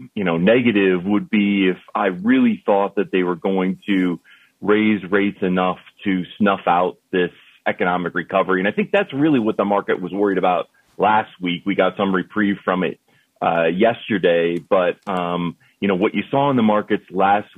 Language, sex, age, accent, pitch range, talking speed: English, male, 30-49, American, 90-105 Hz, 190 wpm